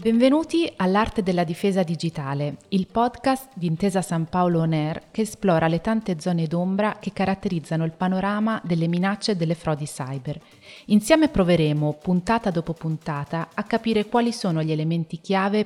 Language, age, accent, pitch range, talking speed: Italian, 30-49, native, 170-210 Hz, 155 wpm